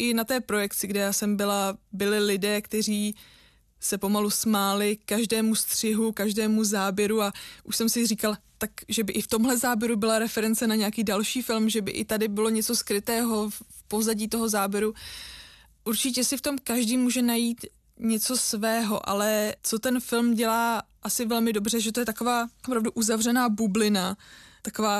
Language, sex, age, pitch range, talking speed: Czech, female, 20-39, 200-225 Hz, 175 wpm